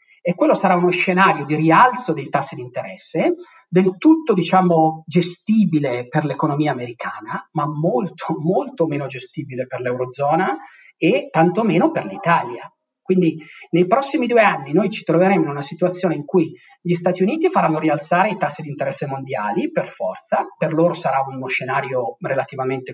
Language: Italian